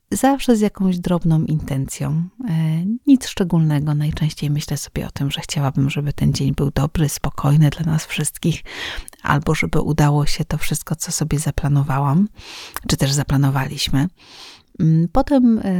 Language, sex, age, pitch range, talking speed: English, female, 40-59, 150-200 Hz, 135 wpm